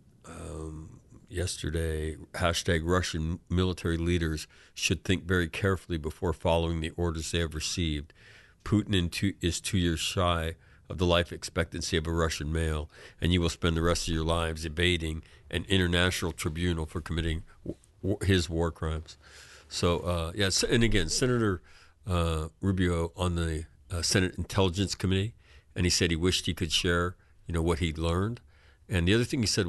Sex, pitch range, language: male, 80-95 Hz, English